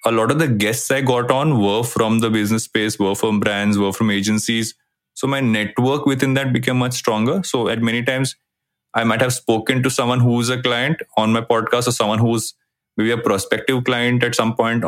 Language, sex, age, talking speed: Hindi, male, 20-39, 215 wpm